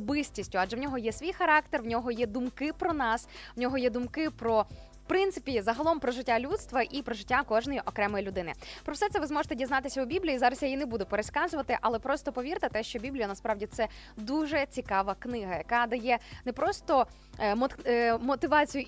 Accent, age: native, 20-39